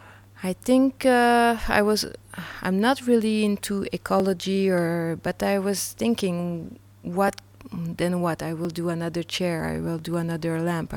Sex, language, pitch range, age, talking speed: female, Czech, 165-195 Hz, 30-49, 155 wpm